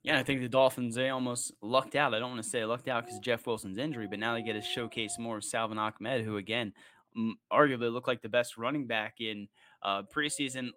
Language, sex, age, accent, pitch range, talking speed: English, male, 20-39, American, 110-130 Hz, 240 wpm